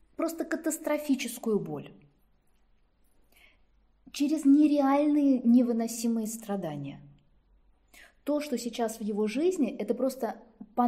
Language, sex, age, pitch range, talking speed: Russian, female, 20-39, 195-245 Hz, 90 wpm